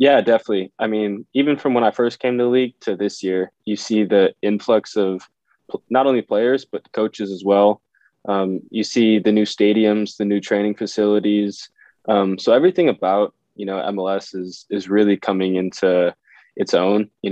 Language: English